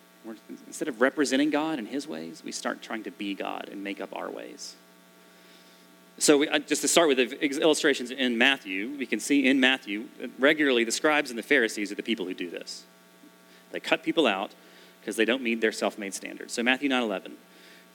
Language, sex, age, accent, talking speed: English, male, 30-49, American, 195 wpm